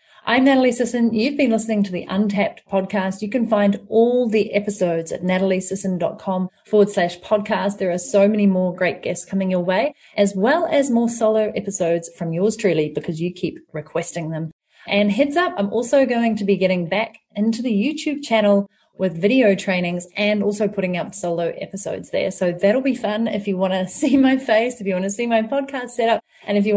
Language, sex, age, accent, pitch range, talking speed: English, female, 30-49, Australian, 185-225 Hz, 205 wpm